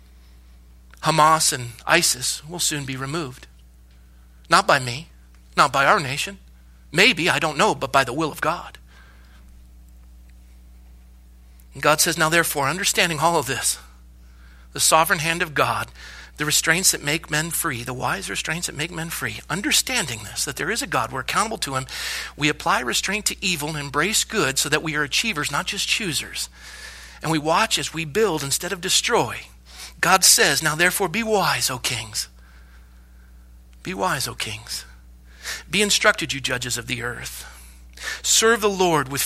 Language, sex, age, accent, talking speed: English, male, 40-59, American, 165 wpm